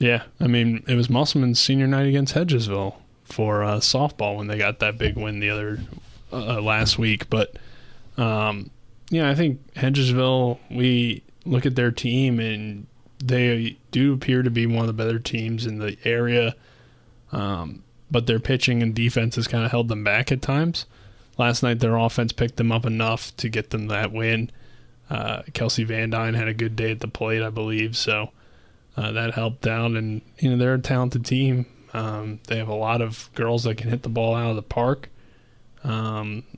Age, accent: 20-39, American